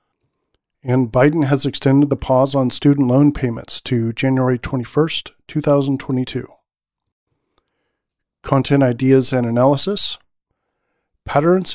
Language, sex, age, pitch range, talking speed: English, male, 40-59, 120-140 Hz, 95 wpm